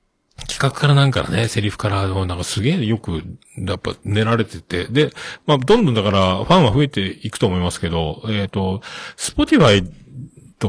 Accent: native